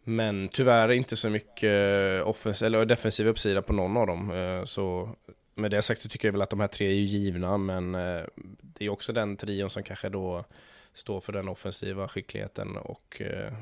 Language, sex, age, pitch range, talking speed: Swedish, male, 20-39, 100-110 Hz, 190 wpm